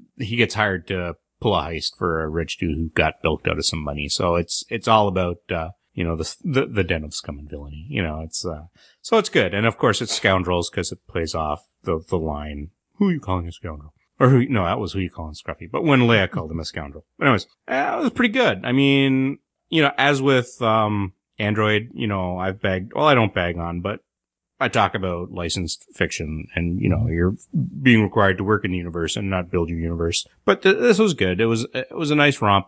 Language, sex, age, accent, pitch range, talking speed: English, male, 30-49, American, 90-115 Hz, 245 wpm